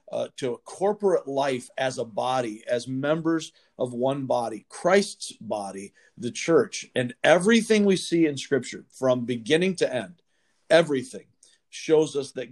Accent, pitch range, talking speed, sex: American, 130-165 Hz, 150 wpm, male